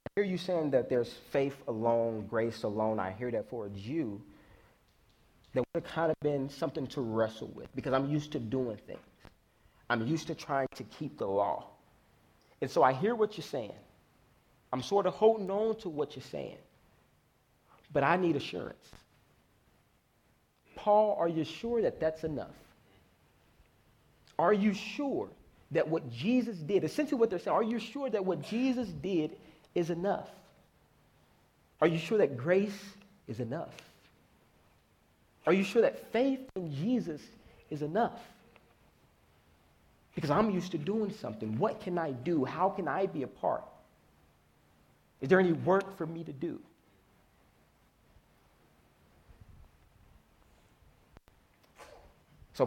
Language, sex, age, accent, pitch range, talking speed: English, male, 40-59, American, 125-200 Hz, 145 wpm